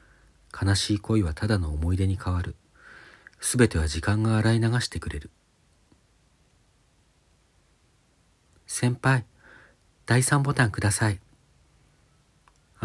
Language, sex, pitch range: Japanese, male, 85-115 Hz